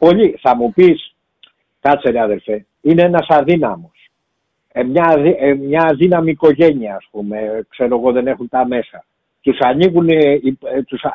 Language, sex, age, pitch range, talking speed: Greek, male, 60-79, 145-190 Hz, 130 wpm